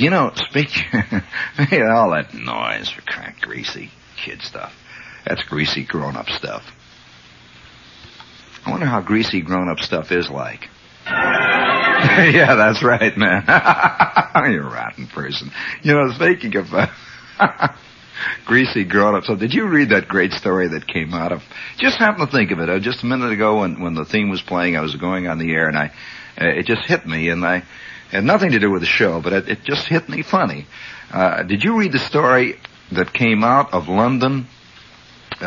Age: 60-79